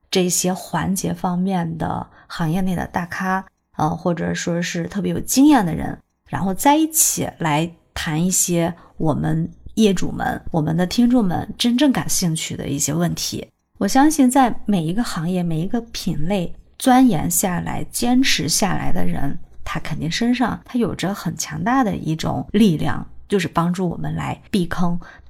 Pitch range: 160-225 Hz